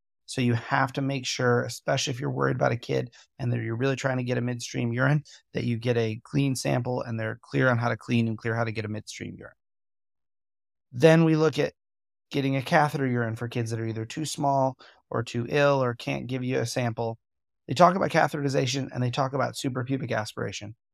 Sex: male